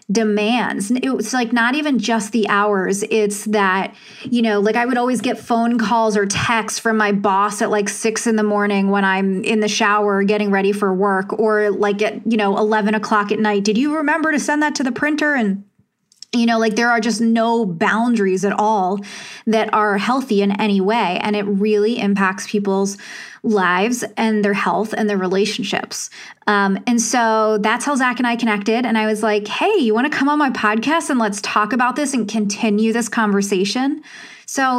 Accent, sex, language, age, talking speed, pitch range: American, female, English, 20-39, 200 wpm, 205-235 Hz